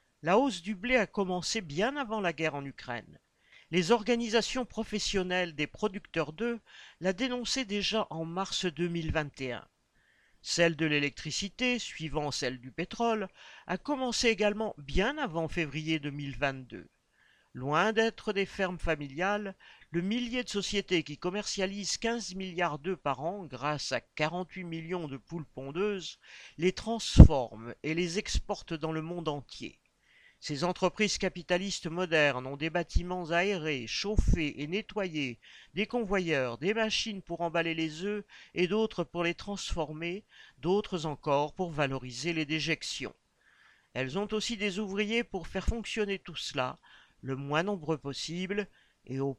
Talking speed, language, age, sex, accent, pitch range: 140 wpm, French, 50-69, male, French, 155-210 Hz